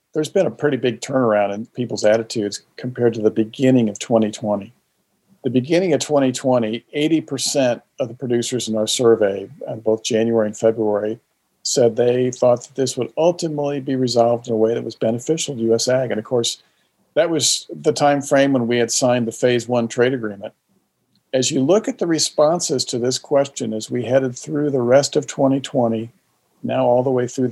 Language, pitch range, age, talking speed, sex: English, 115-145 Hz, 50-69, 190 wpm, male